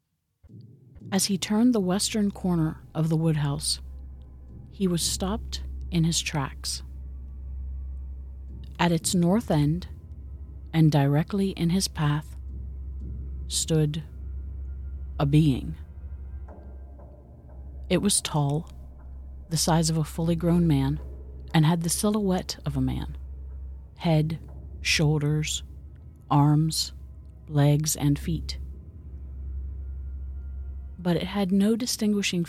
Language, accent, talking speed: English, American, 100 wpm